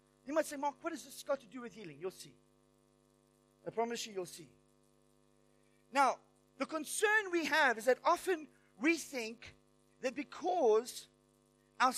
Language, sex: English, male